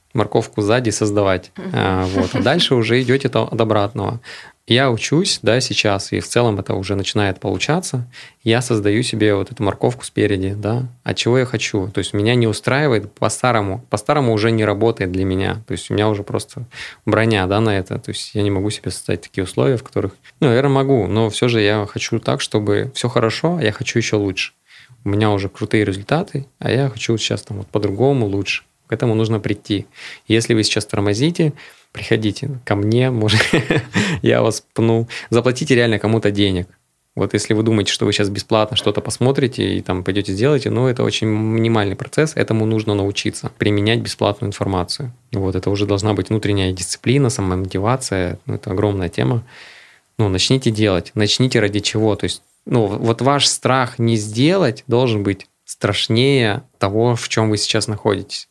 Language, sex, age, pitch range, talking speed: Russian, male, 20-39, 100-120 Hz, 180 wpm